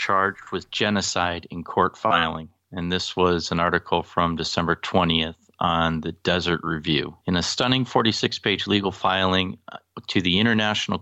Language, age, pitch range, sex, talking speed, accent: English, 40-59, 90-105 Hz, male, 145 wpm, American